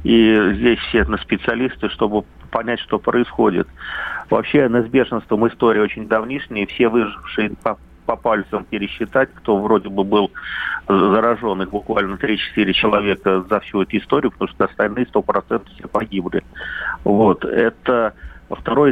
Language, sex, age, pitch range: Russian, male, 50-69, 105-115 Hz